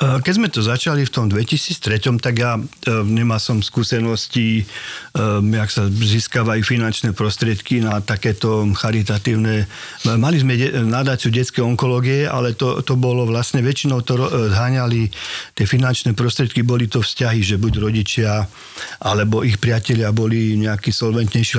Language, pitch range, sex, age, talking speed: Slovak, 105-120 Hz, male, 50-69, 135 wpm